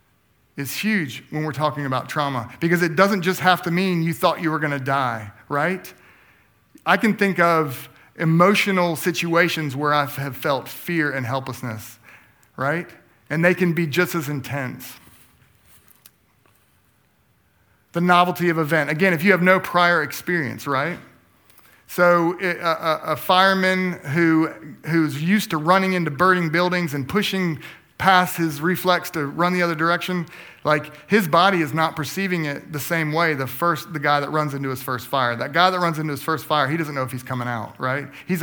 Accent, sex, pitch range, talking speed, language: American, male, 140-175 Hz, 180 wpm, English